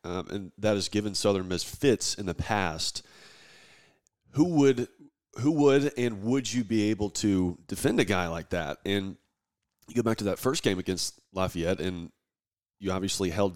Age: 30-49